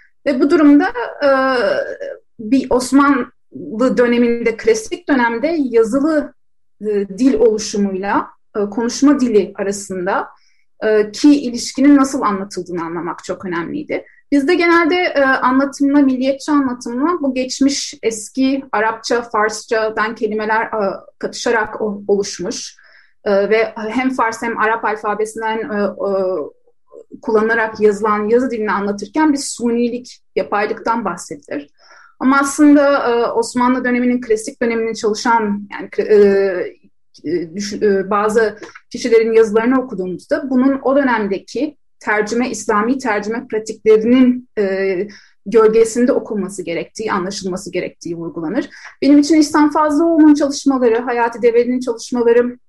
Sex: female